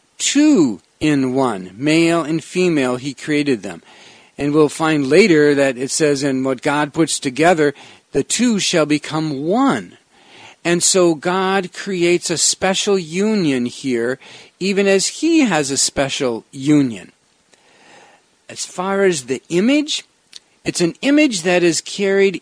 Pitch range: 140-210 Hz